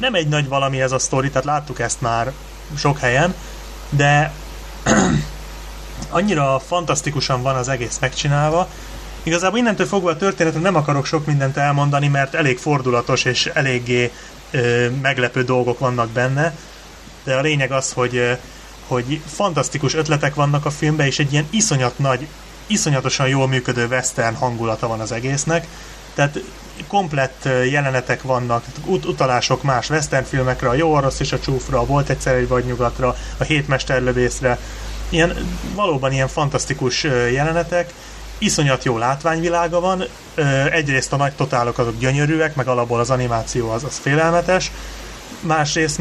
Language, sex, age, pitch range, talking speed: Hungarian, male, 30-49, 125-155 Hz, 145 wpm